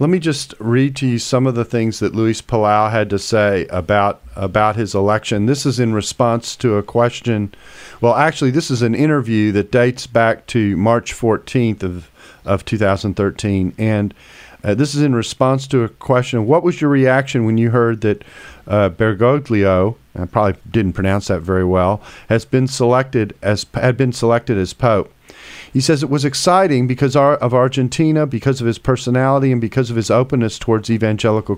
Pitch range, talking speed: 105-130 Hz, 180 wpm